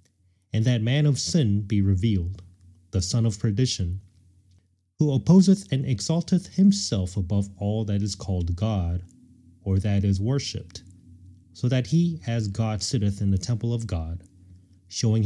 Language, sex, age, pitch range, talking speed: English, male, 30-49, 90-120 Hz, 150 wpm